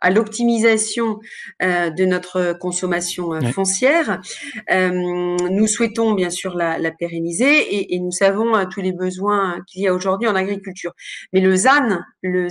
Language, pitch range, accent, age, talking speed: French, 185-230 Hz, French, 40-59, 165 wpm